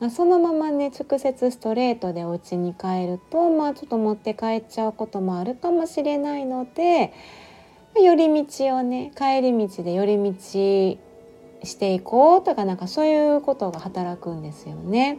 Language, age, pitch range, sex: Japanese, 30-49, 180-285 Hz, female